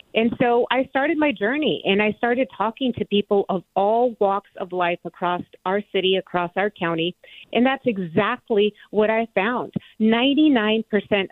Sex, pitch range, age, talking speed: female, 180-225 Hz, 40-59, 165 wpm